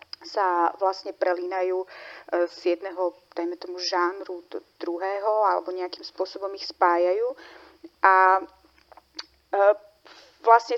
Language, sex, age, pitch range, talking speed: Czech, female, 30-49, 190-255 Hz, 95 wpm